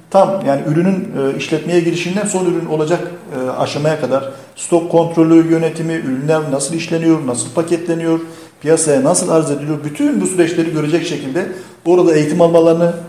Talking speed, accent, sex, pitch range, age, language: 140 wpm, native, male, 140-175 Hz, 40-59, Turkish